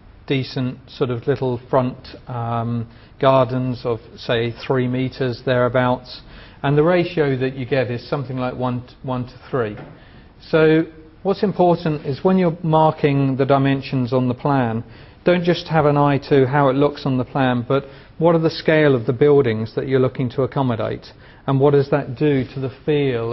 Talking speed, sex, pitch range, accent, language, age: 180 wpm, male, 125-150 Hz, British, English, 40-59